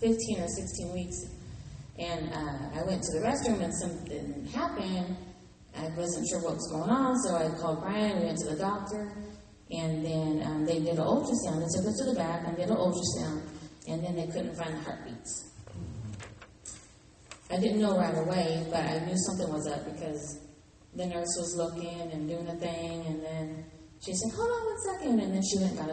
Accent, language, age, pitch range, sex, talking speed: American, English, 30-49, 155-185 Hz, female, 205 wpm